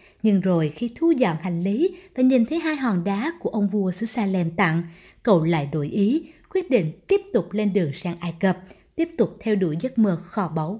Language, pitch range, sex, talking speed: Vietnamese, 185-240 Hz, female, 215 wpm